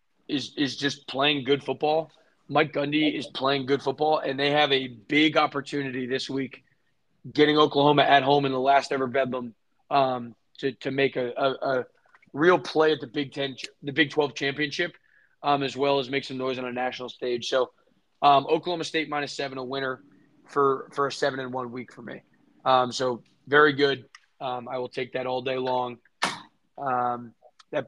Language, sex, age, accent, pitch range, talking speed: English, male, 20-39, American, 130-150 Hz, 190 wpm